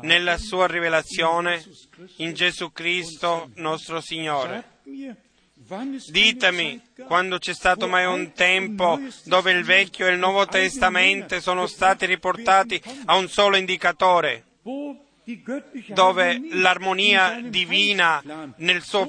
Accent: native